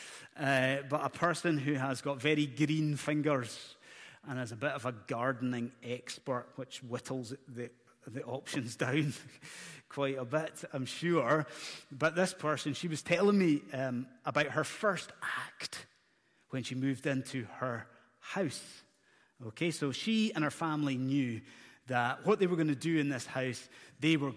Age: 30-49